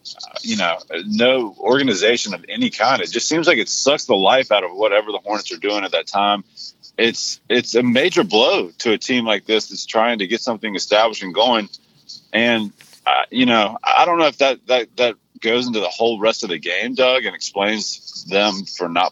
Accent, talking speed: American, 215 wpm